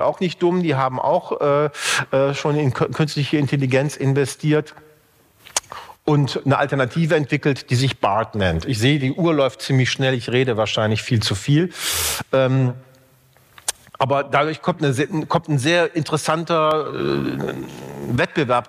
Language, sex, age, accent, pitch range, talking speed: German, male, 40-59, German, 125-155 Hz, 140 wpm